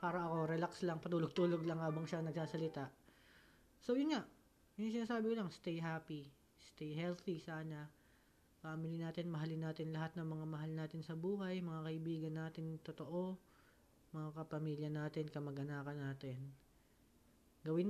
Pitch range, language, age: 155-180 Hz, Filipino, 20-39